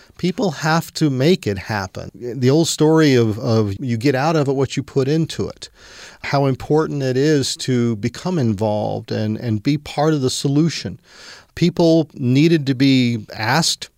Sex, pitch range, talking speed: male, 115-145 Hz, 170 wpm